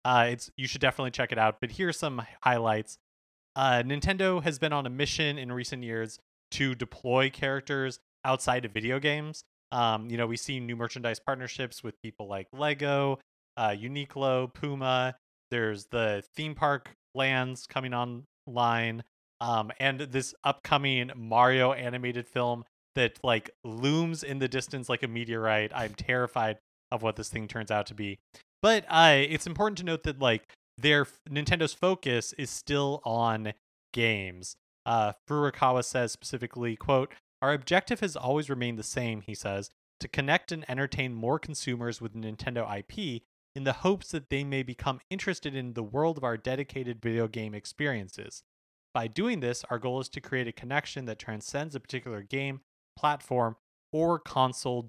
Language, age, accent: English, 30-49, American